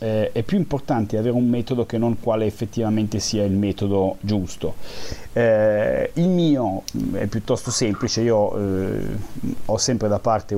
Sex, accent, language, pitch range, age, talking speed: male, native, Italian, 100-120 Hz, 30-49, 145 wpm